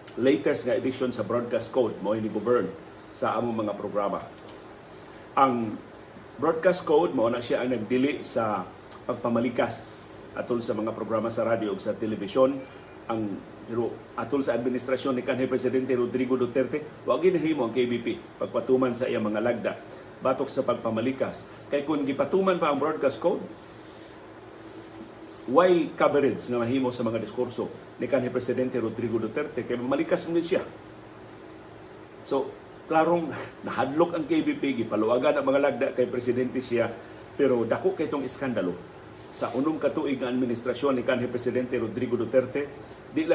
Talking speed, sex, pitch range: 145 wpm, male, 120-135 Hz